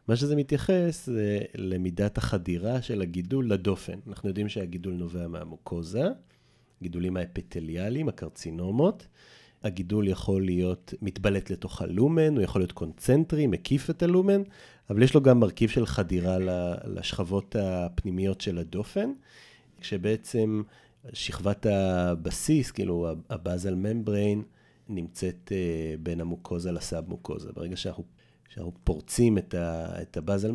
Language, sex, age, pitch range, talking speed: Hebrew, male, 30-49, 90-115 Hz, 110 wpm